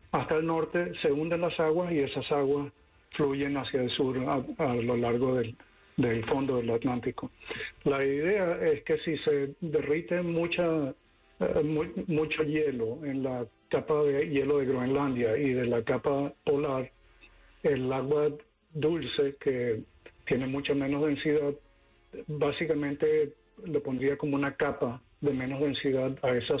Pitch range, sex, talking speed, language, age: 125-150 Hz, male, 150 wpm, English, 50-69